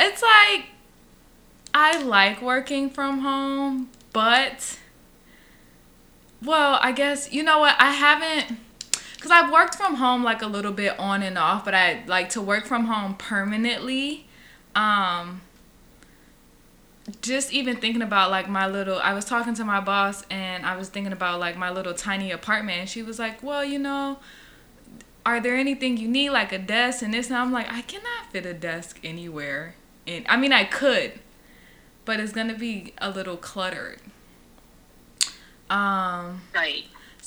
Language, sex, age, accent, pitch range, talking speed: English, female, 20-39, American, 185-255 Hz, 160 wpm